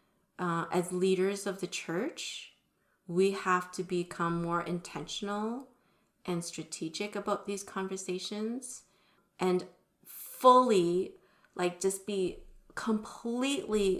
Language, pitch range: English, 175-200 Hz